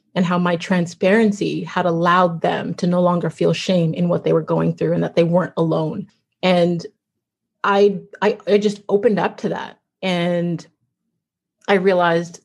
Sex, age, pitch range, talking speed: female, 30-49, 170-195 Hz, 170 wpm